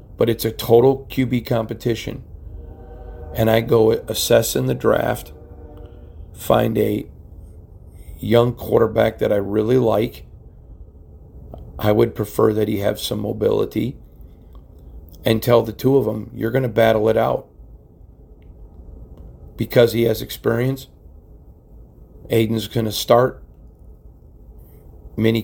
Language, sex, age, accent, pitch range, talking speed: English, male, 40-59, American, 85-115 Hz, 120 wpm